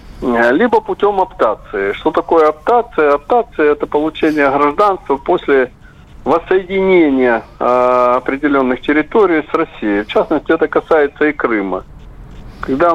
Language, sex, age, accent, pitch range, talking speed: Russian, male, 40-59, native, 125-155 Hz, 110 wpm